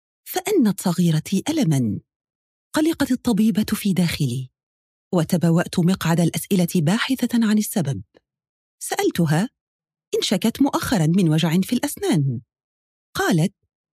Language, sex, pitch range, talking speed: Arabic, female, 165-260 Hz, 95 wpm